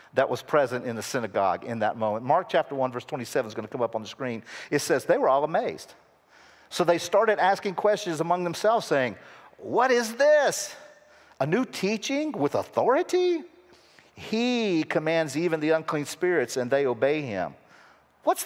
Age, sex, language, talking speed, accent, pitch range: 50-69, male, English, 180 wpm, American, 135-195 Hz